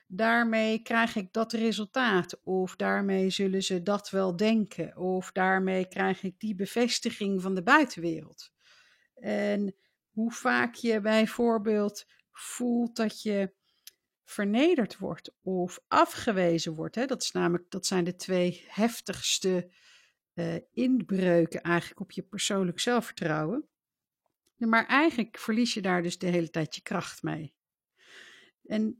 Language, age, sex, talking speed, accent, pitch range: Dutch, 50-69, female, 120 wpm, Dutch, 180-230 Hz